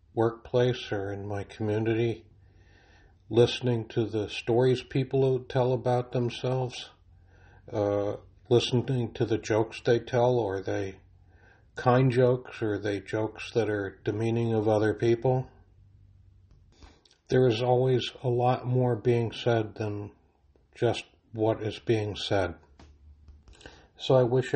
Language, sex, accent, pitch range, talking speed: English, male, American, 100-120 Hz, 125 wpm